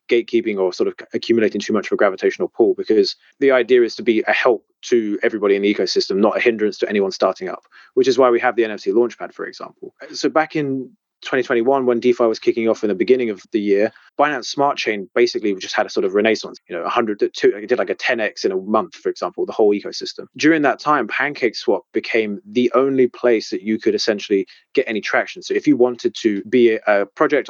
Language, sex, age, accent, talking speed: English, male, 20-39, British, 230 wpm